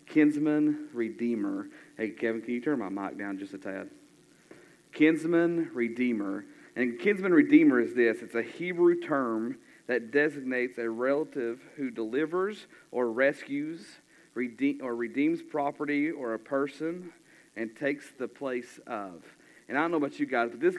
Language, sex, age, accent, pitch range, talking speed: English, male, 40-59, American, 120-175 Hz, 150 wpm